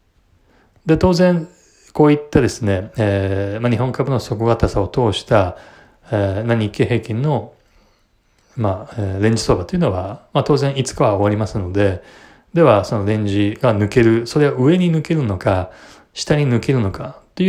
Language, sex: Japanese, male